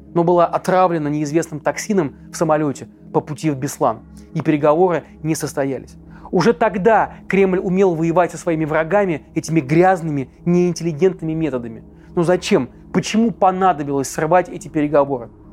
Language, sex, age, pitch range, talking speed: Russian, male, 30-49, 155-190 Hz, 130 wpm